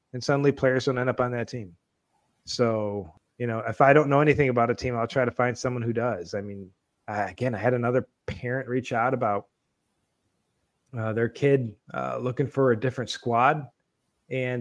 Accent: American